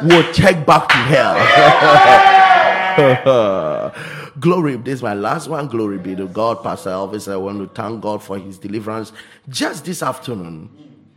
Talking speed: 150 wpm